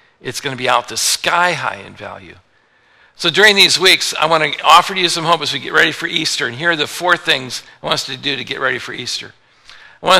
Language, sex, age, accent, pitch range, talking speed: English, male, 60-79, American, 140-175 Hz, 265 wpm